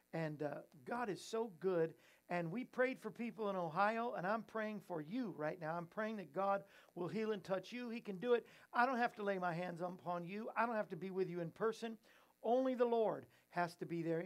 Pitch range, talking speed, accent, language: 160-210 Hz, 245 wpm, American, English